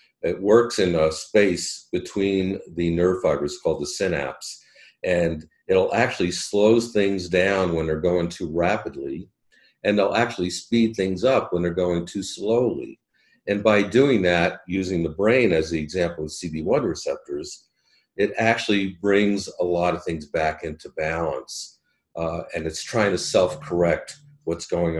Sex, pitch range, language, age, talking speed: male, 80-95 Hz, English, 50-69, 160 wpm